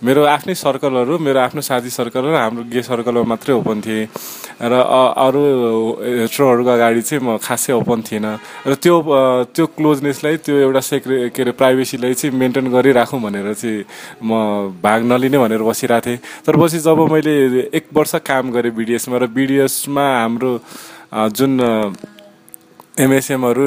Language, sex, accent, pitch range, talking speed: English, male, Indian, 115-140 Hz, 70 wpm